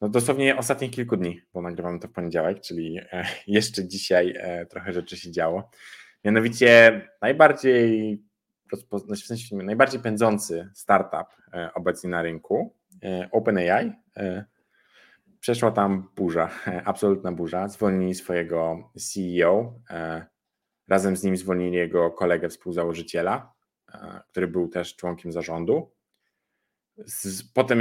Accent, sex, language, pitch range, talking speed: native, male, Polish, 90-115 Hz, 105 wpm